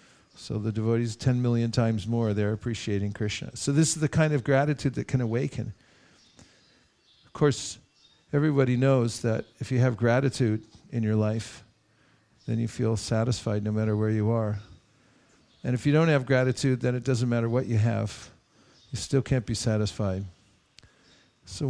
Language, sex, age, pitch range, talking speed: English, male, 50-69, 110-145 Hz, 165 wpm